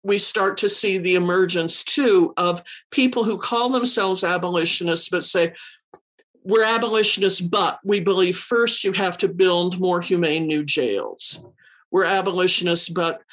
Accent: American